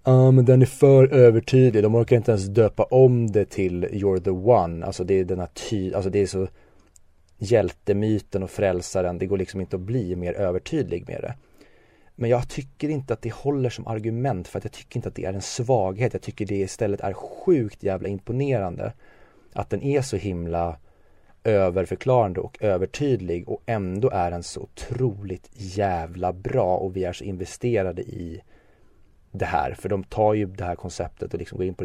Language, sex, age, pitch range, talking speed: Swedish, male, 30-49, 90-115 Hz, 195 wpm